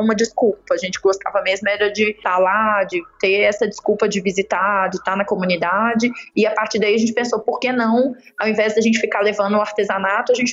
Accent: Brazilian